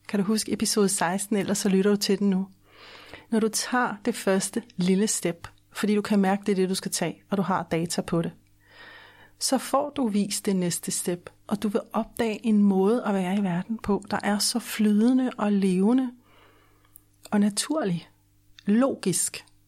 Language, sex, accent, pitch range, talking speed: Danish, female, native, 165-215 Hz, 185 wpm